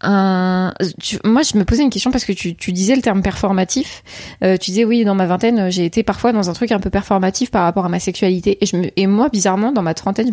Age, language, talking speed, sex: 20-39, French, 265 wpm, female